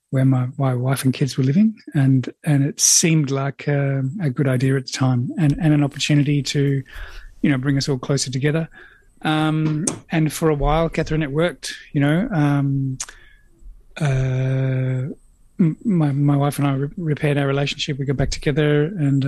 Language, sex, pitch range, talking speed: English, male, 130-150 Hz, 175 wpm